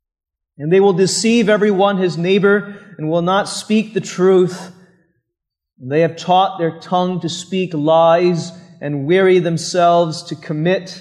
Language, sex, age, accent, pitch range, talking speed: English, male, 30-49, American, 165-200 Hz, 145 wpm